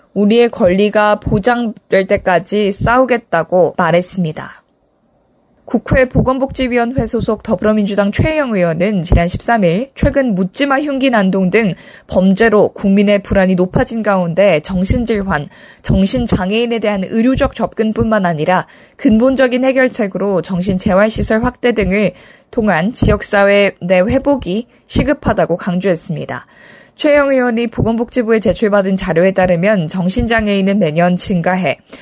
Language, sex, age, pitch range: Korean, female, 20-39, 185-245 Hz